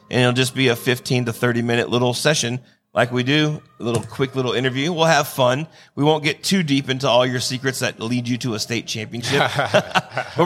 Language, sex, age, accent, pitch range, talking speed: English, male, 30-49, American, 120-145 Hz, 220 wpm